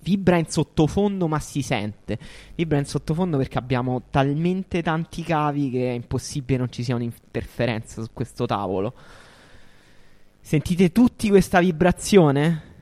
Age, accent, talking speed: 20-39, native, 130 wpm